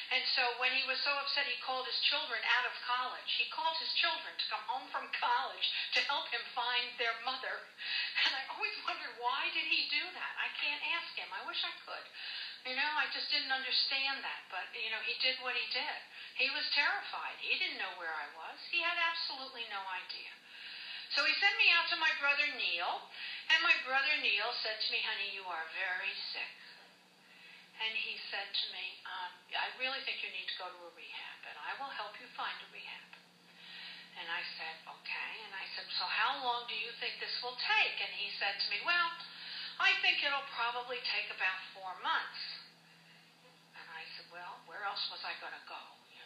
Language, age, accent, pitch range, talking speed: English, 50-69, American, 195-295 Hz, 210 wpm